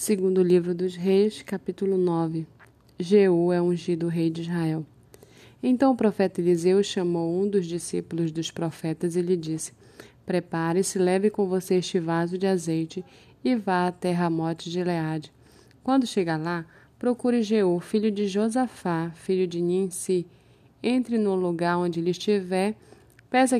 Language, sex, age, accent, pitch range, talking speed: Portuguese, female, 20-39, Brazilian, 170-200 Hz, 150 wpm